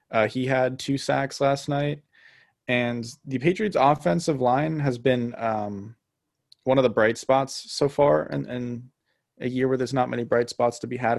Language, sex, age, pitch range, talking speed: English, male, 20-39, 110-130 Hz, 180 wpm